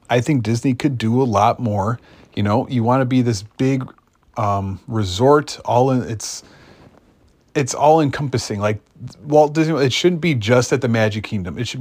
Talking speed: 190 wpm